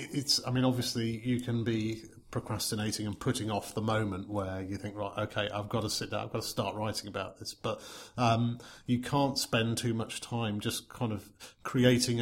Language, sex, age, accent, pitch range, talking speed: English, male, 40-59, British, 105-120 Hz, 205 wpm